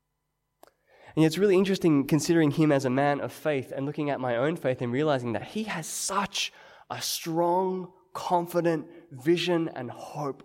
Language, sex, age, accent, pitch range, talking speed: English, male, 20-39, Australian, 130-170 Hz, 165 wpm